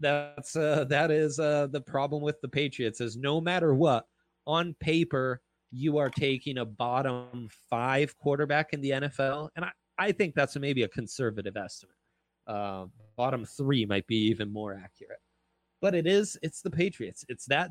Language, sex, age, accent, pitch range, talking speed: English, male, 30-49, American, 120-160 Hz, 175 wpm